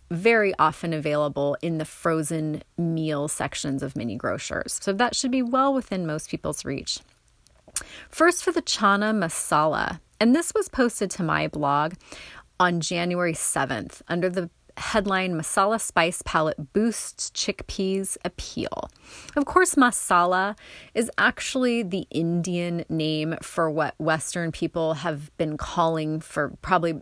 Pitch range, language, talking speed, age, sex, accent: 160-210 Hz, English, 135 wpm, 30-49, female, American